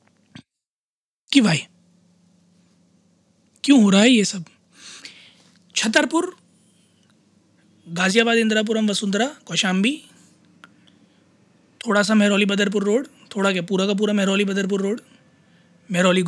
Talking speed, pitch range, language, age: 100 wpm, 180-215 Hz, Hindi, 20-39